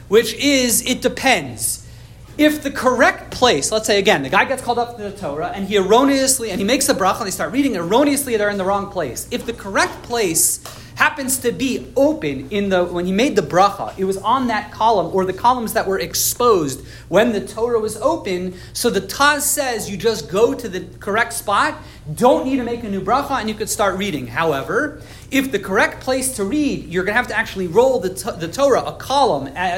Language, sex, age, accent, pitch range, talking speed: English, male, 40-59, American, 175-250 Hz, 220 wpm